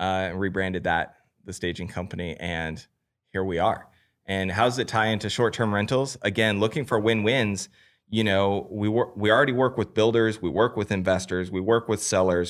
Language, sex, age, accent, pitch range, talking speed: English, male, 30-49, American, 90-110 Hz, 190 wpm